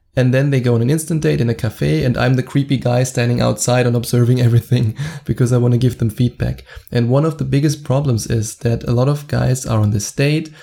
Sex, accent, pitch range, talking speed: male, German, 115-135 Hz, 250 wpm